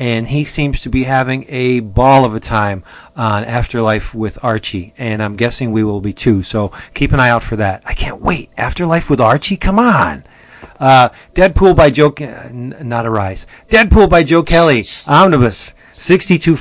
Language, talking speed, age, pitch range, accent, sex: English, 190 wpm, 40-59, 110-145 Hz, American, male